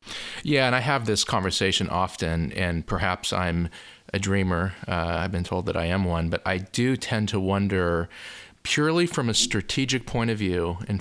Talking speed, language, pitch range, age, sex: 185 wpm, English, 90-110 Hz, 40-59, male